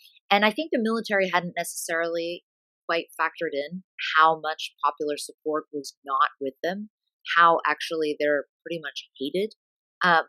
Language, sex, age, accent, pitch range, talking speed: English, female, 30-49, American, 150-190 Hz, 145 wpm